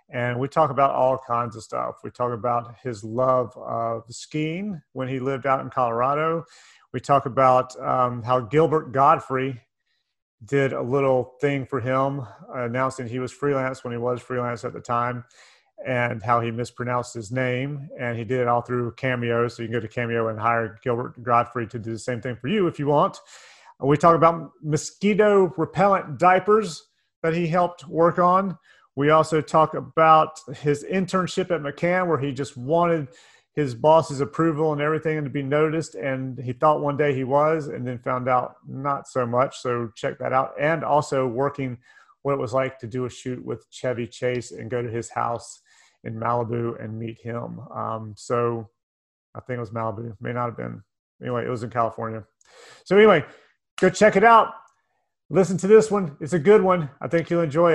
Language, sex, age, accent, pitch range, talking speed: English, male, 30-49, American, 120-155 Hz, 195 wpm